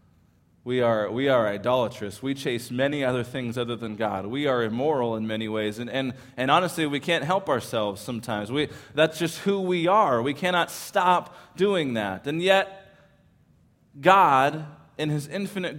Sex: male